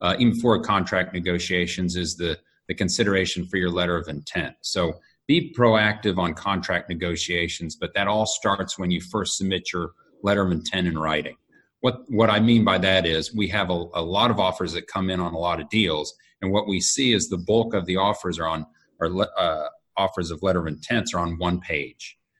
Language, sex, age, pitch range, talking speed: English, male, 40-59, 85-105 Hz, 215 wpm